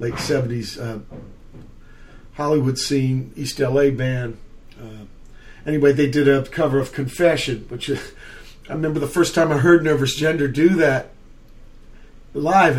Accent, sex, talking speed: American, male, 135 wpm